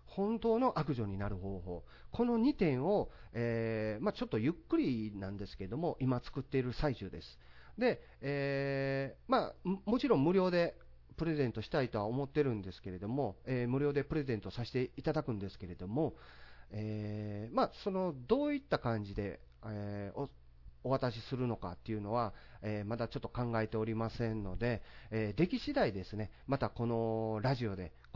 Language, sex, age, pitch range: Japanese, male, 40-59, 95-135 Hz